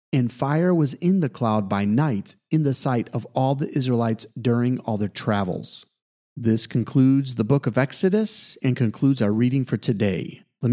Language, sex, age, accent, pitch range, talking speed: English, male, 40-59, American, 115-145 Hz, 180 wpm